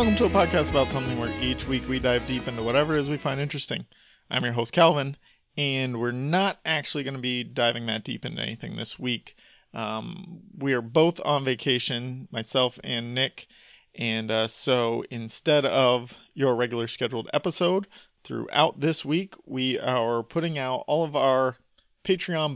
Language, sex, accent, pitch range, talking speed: English, male, American, 115-145 Hz, 175 wpm